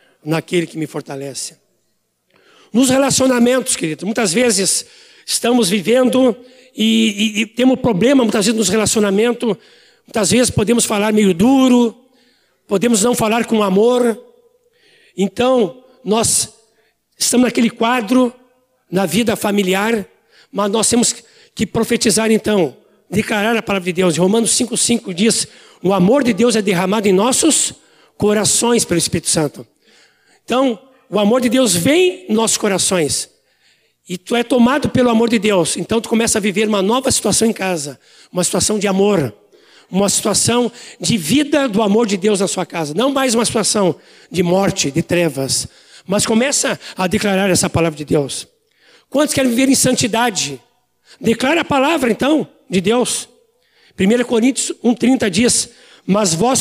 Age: 60-79